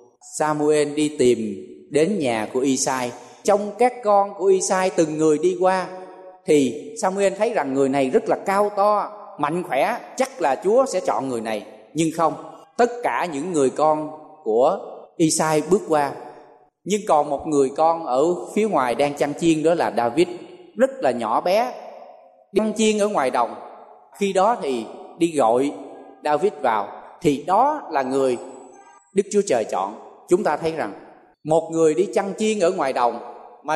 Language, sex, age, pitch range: Thai, male, 20-39, 145-200 Hz